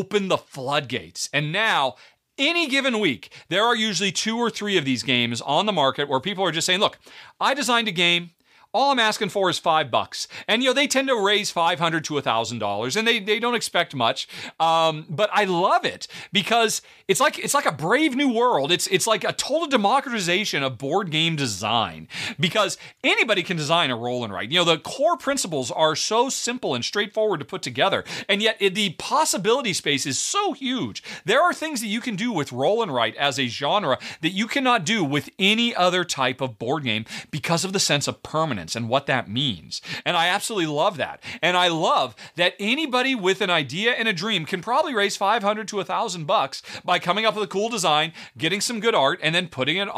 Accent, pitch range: American, 155-230 Hz